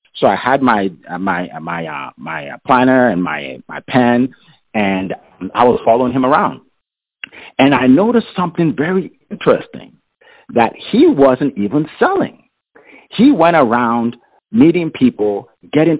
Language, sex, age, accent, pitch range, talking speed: English, male, 50-69, American, 105-145 Hz, 135 wpm